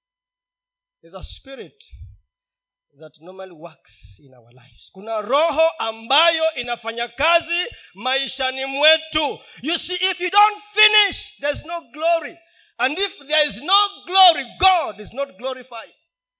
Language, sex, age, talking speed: Swahili, male, 40-59, 125 wpm